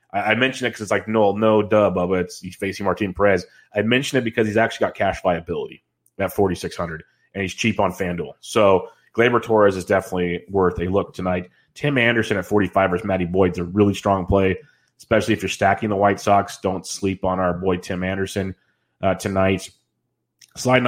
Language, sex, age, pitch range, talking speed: English, male, 30-49, 95-110 Hz, 195 wpm